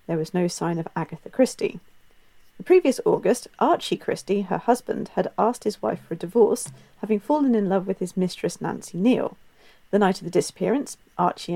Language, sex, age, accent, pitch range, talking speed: English, female, 40-59, British, 180-235 Hz, 185 wpm